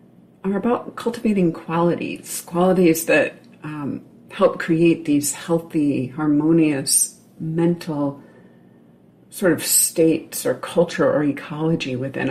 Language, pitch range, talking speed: English, 145-185 Hz, 100 wpm